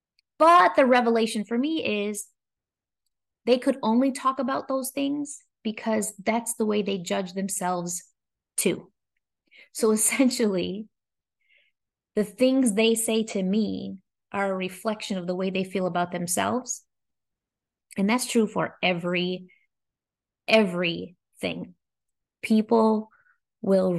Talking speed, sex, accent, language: 120 wpm, female, American, English